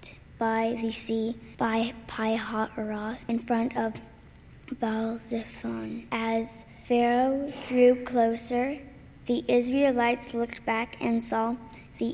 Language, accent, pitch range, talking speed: English, American, 220-235 Hz, 100 wpm